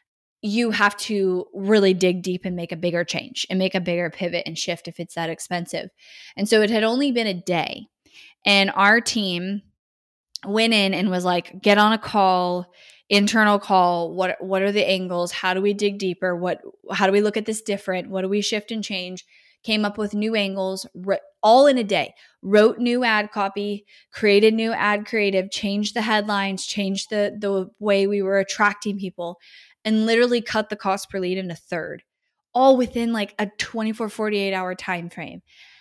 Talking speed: 195 wpm